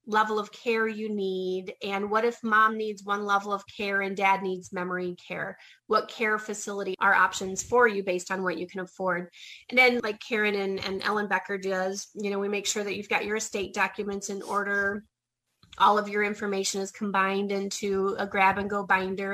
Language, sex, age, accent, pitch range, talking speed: English, female, 30-49, American, 190-215 Hz, 205 wpm